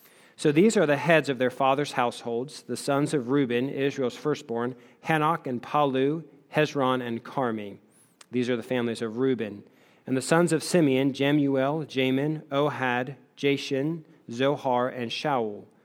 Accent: American